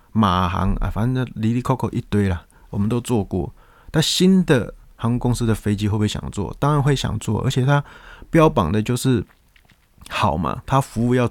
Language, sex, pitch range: Chinese, male, 95-120 Hz